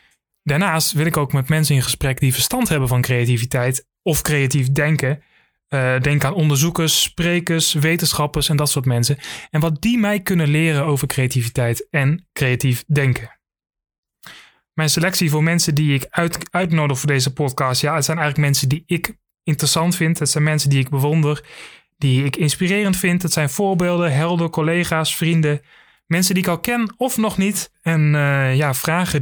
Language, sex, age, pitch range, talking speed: Dutch, male, 20-39, 135-170 Hz, 175 wpm